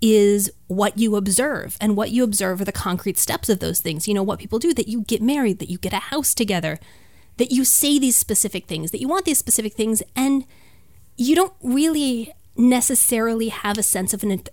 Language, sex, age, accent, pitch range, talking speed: English, female, 30-49, American, 195-255 Hz, 215 wpm